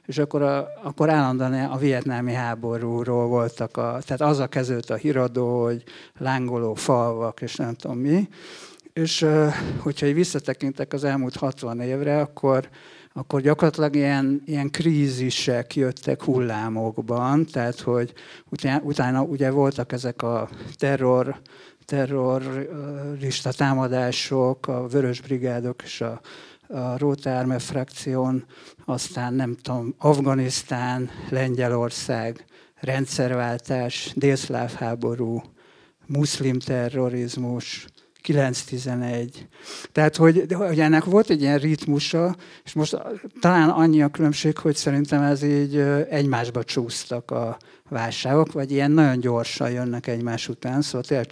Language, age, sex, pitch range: Hungarian, 60-79, male, 125-145 Hz